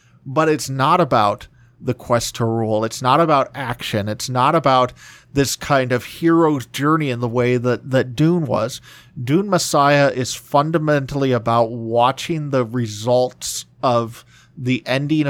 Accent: American